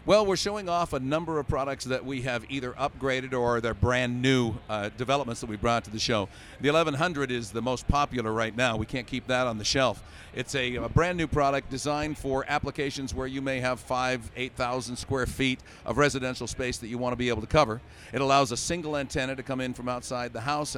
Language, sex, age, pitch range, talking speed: English, male, 50-69, 120-140 Hz, 230 wpm